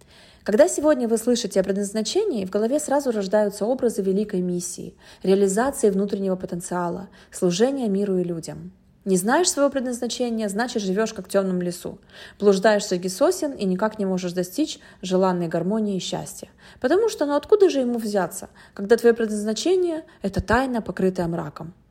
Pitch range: 190-245 Hz